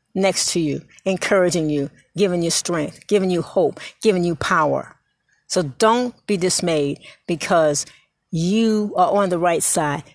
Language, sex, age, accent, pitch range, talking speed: English, female, 60-79, American, 165-215 Hz, 150 wpm